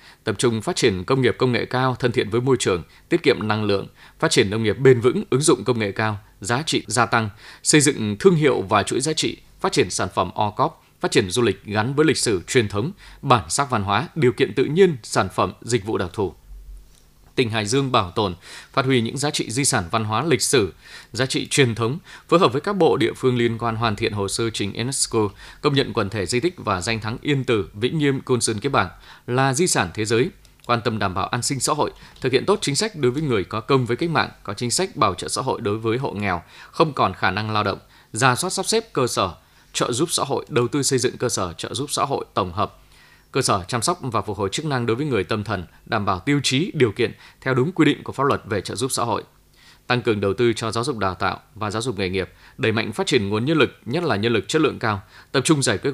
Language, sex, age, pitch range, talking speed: Vietnamese, male, 20-39, 110-135 Hz, 270 wpm